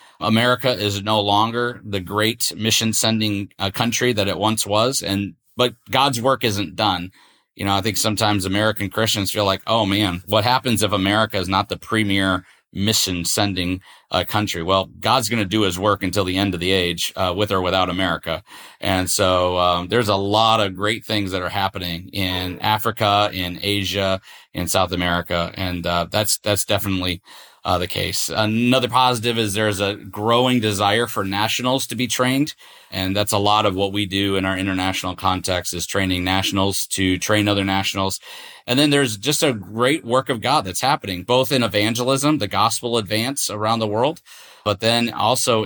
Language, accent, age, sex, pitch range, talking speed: English, American, 30-49, male, 95-115 Hz, 185 wpm